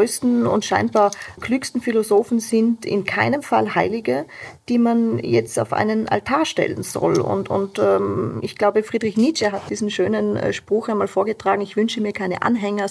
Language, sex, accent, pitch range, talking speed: German, female, German, 190-230 Hz, 165 wpm